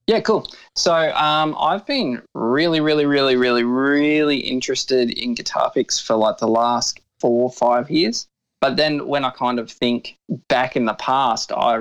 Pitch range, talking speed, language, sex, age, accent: 115-135 Hz, 180 wpm, English, male, 20-39, Australian